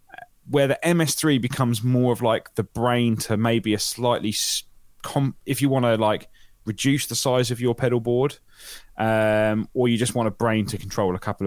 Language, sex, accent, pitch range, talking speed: English, male, British, 105-130 Hz, 195 wpm